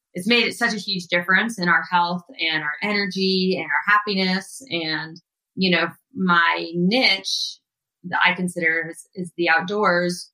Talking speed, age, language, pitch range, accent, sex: 155 wpm, 20-39, English, 170-195 Hz, American, female